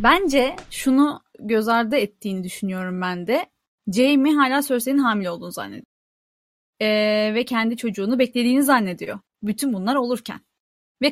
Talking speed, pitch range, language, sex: 130 wpm, 220-285 Hz, Turkish, female